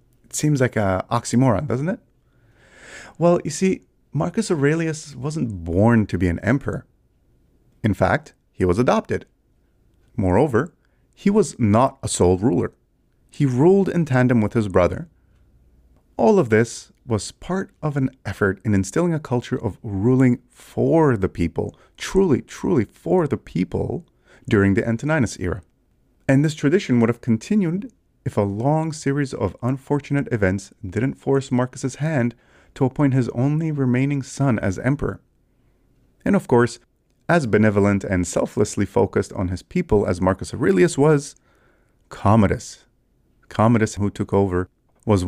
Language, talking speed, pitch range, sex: English, 145 wpm, 105-145 Hz, male